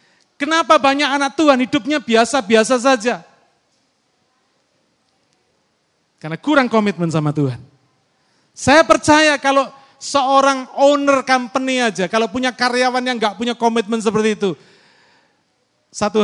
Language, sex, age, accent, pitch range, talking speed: Indonesian, male, 40-59, native, 160-230 Hz, 105 wpm